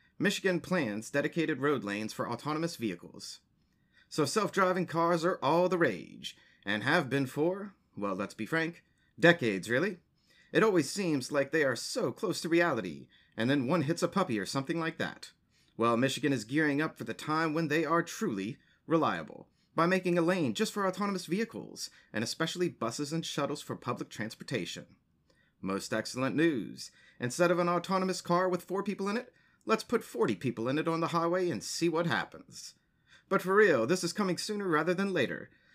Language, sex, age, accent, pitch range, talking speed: English, male, 30-49, American, 130-180 Hz, 185 wpm